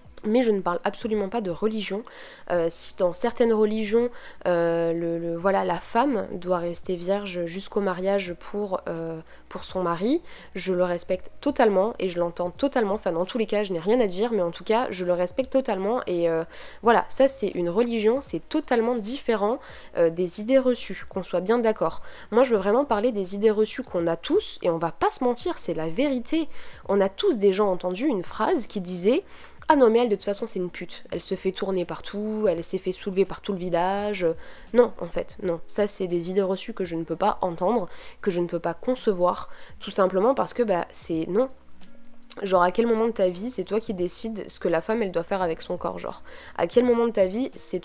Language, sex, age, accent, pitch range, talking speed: French, female, 20-39, French, 180-230 Hz, 230 wpm